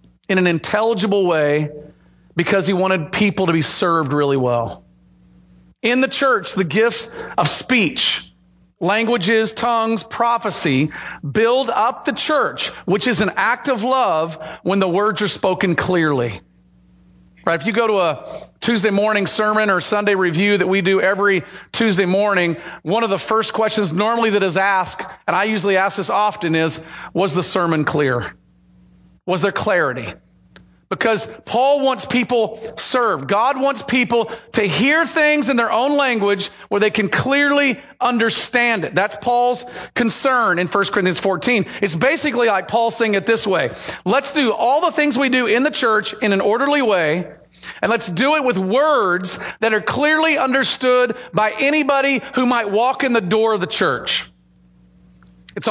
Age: 40-59